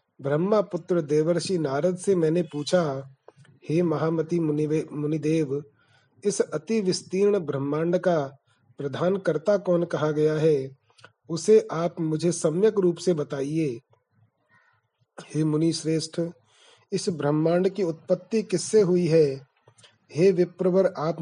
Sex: male